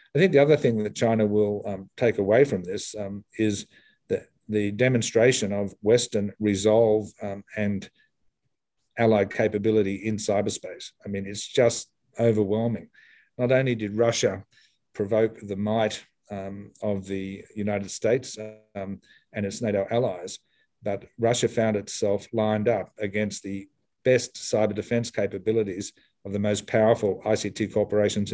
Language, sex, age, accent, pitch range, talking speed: English, male, 50-69, Australian, 100-115 Hz, 140 wpm